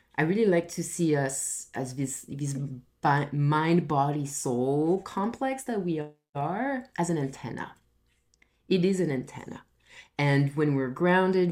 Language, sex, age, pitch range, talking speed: English, female, 30-49, 140-180 Hz, 145 wpm